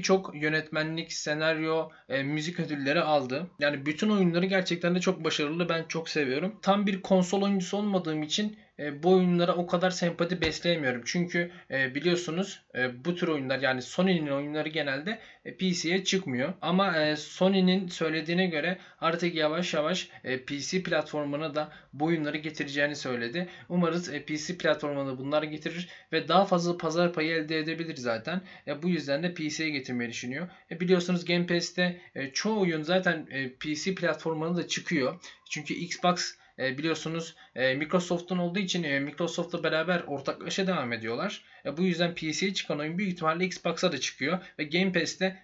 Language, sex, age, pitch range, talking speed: Turkish, male, 20-39, 150-185 Hz, 150 wpm